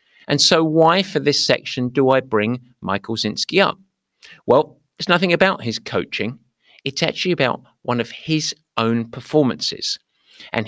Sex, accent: male, British